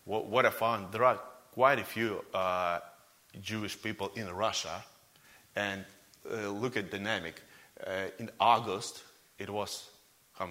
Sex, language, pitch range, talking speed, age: male, English, 100-125 Hz, 150 wpm, 30-49